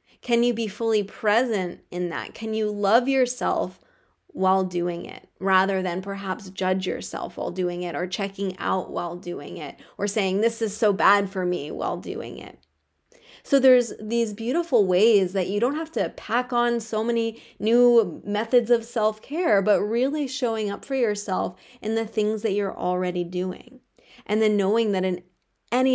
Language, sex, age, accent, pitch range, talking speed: English, female, 20-39, American, 190-230 Hz, 175 wpm